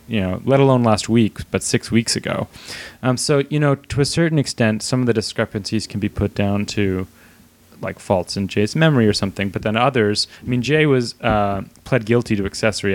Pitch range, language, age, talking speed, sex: 100-120 Hz, English, 30-49, 215 wpm, male